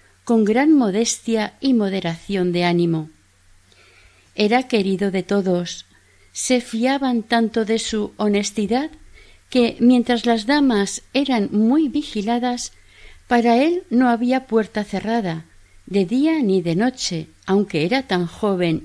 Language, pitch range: Spanish, 165-235 Hz